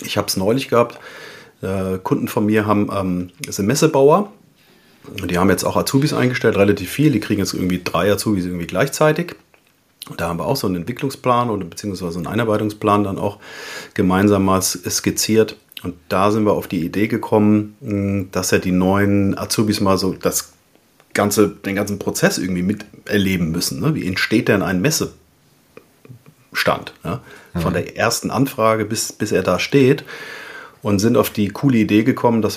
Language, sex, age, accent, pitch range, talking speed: German, male, 40-59, German, 100-125 Hz, 175 wpm